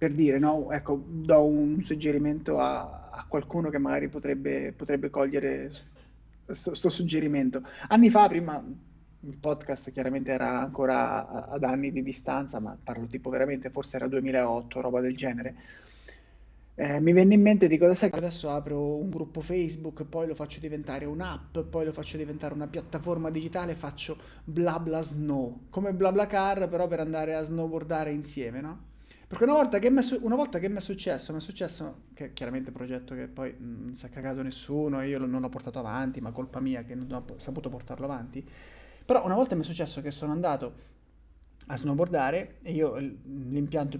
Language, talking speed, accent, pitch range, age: Italian, 185 wpm, native, 130-165 Hz, 30-49